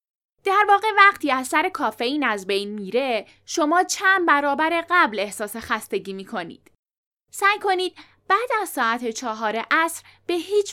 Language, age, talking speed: Persian, 10-29, 140 wpm